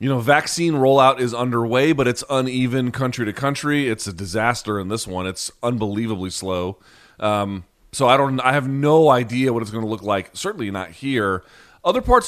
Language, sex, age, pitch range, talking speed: English, male, 30-49, 110-140 Hz, 190 wpm